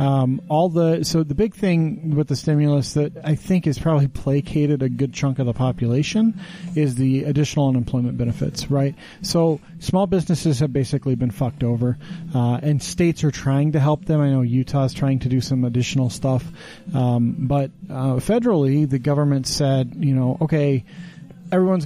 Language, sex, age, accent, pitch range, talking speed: English, male, 40-59, American, 125-155 Hz, 175 wpm